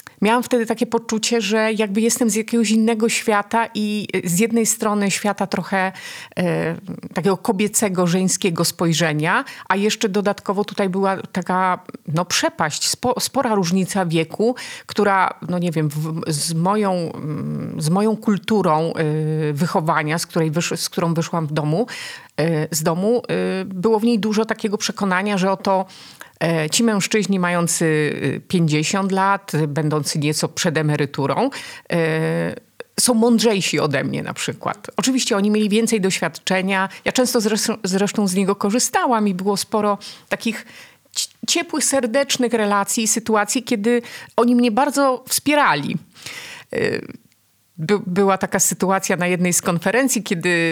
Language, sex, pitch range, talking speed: Polish, female, 175-225 Hz, 135 wpm